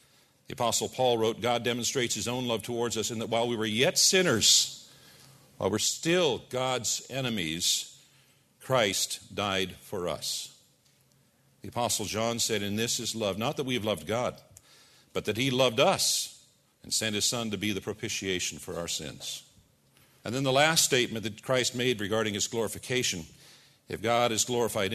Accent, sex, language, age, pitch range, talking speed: American, male, English, 50-69, 100-125 Hz, 175 wpm